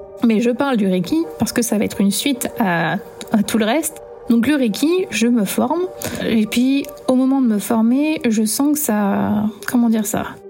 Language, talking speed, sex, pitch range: French, 210 wpm, female, 210-250 Hz